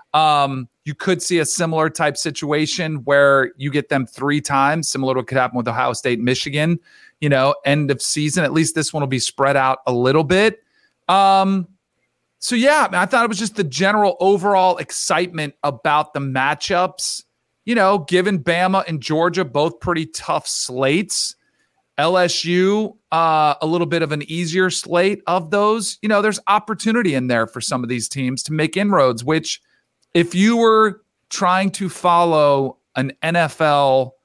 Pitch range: 130-175 Hz